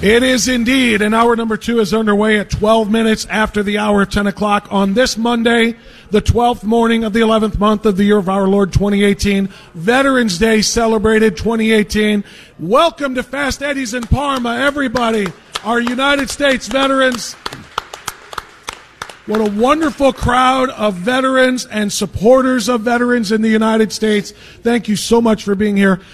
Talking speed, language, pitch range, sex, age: 165 wpm, English, 205-240 Hz, male, 40-59